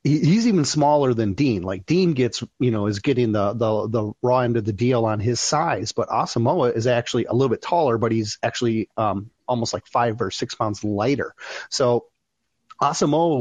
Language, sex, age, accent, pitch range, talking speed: English, male, 30-49, American, 110-135 Hz, 195 wpm